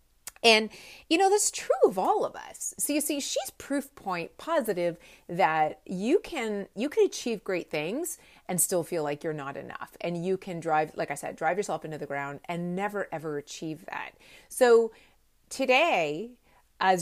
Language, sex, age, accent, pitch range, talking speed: English, female, 30-49, American, 155-185 Hz, 175 wpm